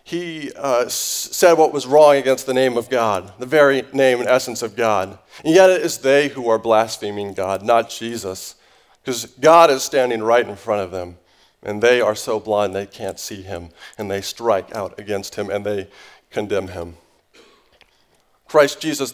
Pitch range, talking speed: 115-170 Hz, 185 wpm